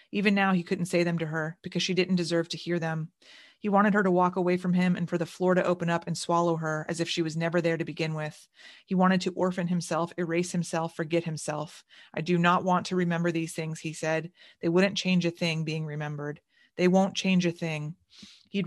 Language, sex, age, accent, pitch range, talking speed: English, female, 30-49, American, 165-185 Hz, 240 wpm